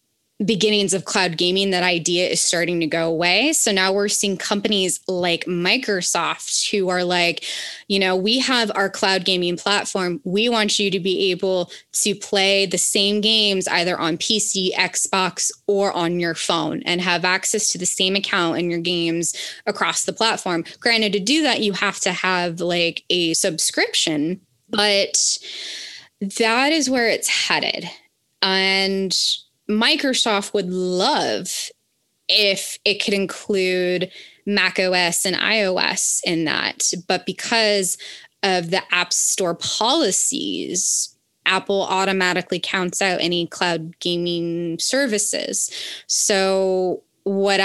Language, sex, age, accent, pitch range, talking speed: English, female, 20-39, American, 175-205 Hz, 135 wpm